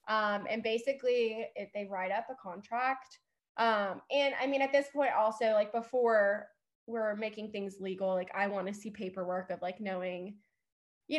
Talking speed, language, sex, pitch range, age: 175 wpm, English, female, 200-235 Hz, 20-39